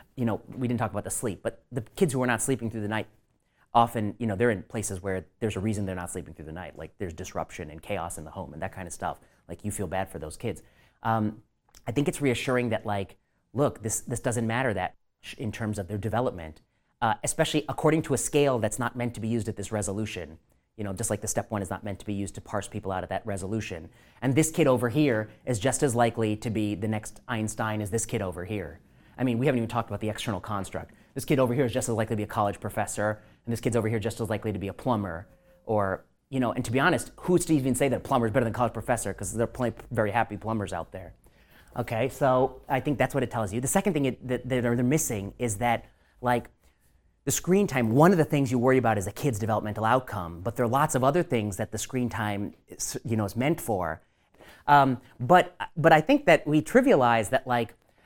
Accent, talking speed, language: American, 260 wpm, English